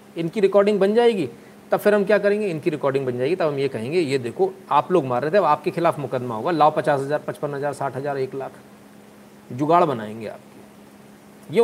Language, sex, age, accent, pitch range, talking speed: Hindi, male, 40-59, native, 125-170 Hz, 215 wpm